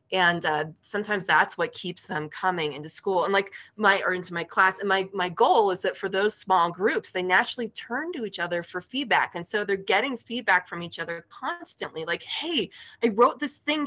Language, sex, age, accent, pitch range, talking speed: English, female, 20-39, American, 165-225 Hz, 215 wpm